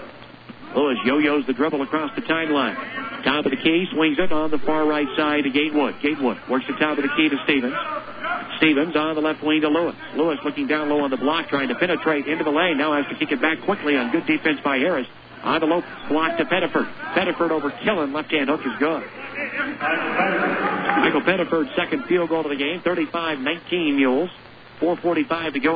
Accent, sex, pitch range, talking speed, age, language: American, male, 145-175 Hz, 205 wpm, 50-69, English